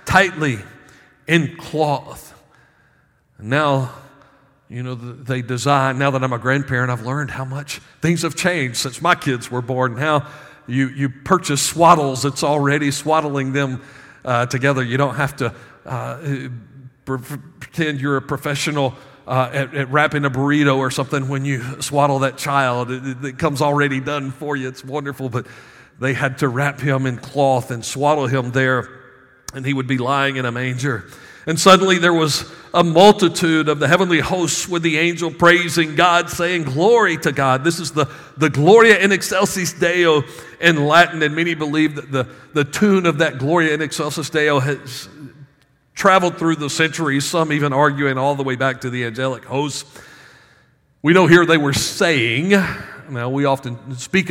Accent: American